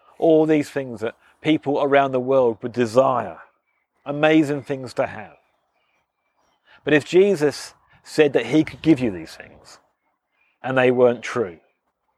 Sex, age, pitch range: male, 40-59, 120-155 Hz